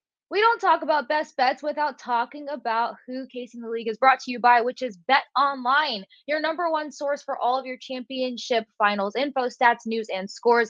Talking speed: 210 wpm